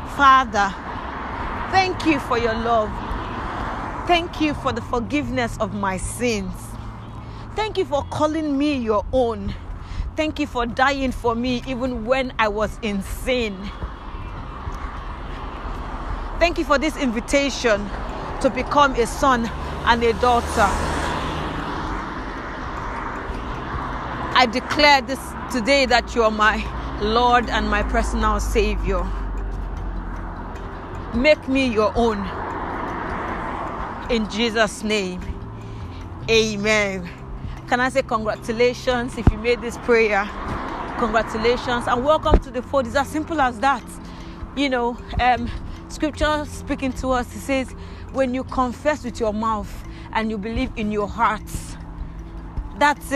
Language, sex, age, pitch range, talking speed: English, female, 40-59, 210-265 Hz, 120 wpm